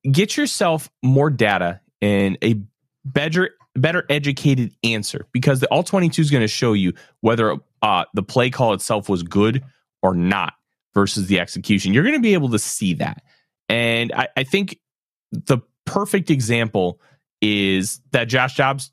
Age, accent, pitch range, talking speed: 30-49, American, 120-180 Hz, 160 wpm